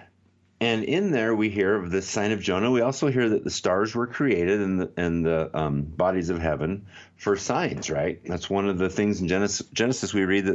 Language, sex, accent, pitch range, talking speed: English, male, American, 85-110 Hz, 230 wpm